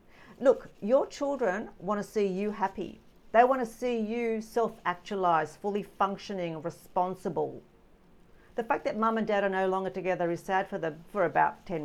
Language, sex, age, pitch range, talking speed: English, female, 50-69, 170-225 Hz, 160 wpm